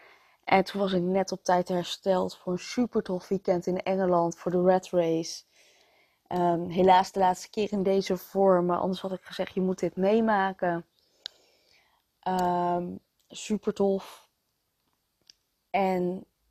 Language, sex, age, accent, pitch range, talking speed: Dutch, female, 20-39, Dutch, 180-205 Hz, 140 wpm